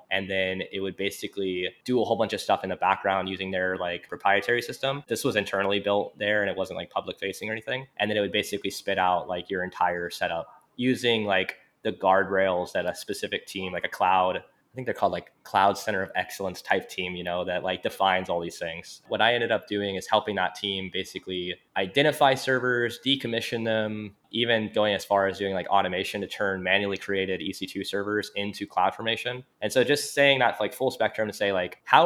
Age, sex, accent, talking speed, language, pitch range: 20-39, male, American, 215 wpm, English, 95-110 Hz